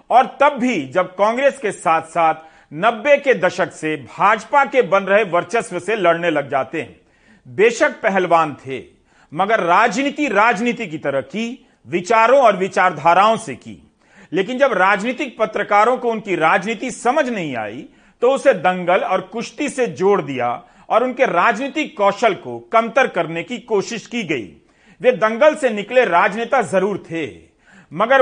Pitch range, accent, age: 180-250 Hz, native, 40-59